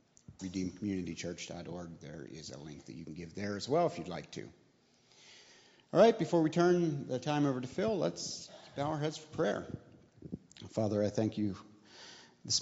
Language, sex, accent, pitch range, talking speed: English, male, American, 100-130 Hz, 175 wpm